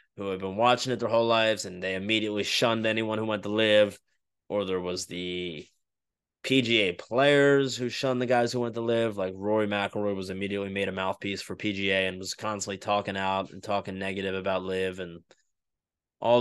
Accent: American